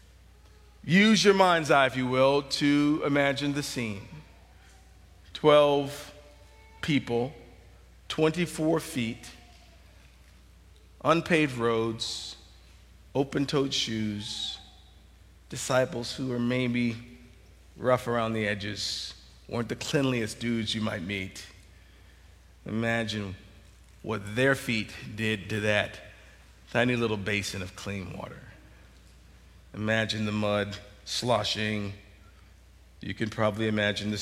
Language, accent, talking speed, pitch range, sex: English, American, 100 wpm, 90-130 Hz, male